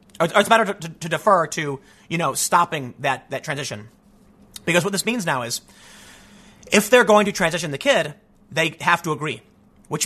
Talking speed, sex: 185 wpm, male